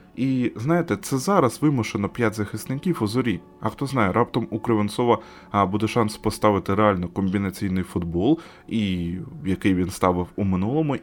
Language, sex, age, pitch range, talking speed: Ukrainian, male, 20-39, 95-135 Hz, 145 wpm